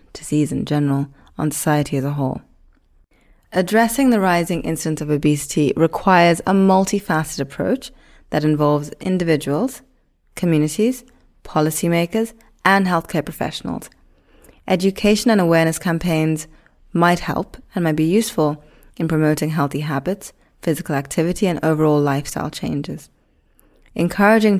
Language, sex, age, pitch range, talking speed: English, female, 20-39, 150-185 Hz, 115 wpm